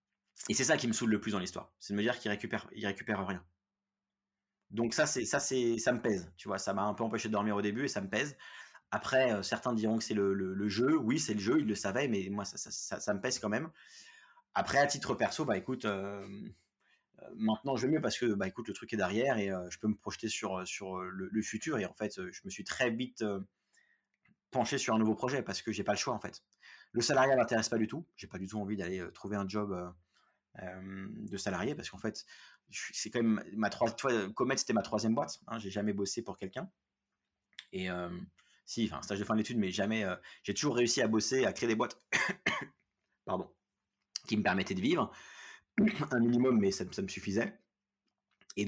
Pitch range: 100-120 Hz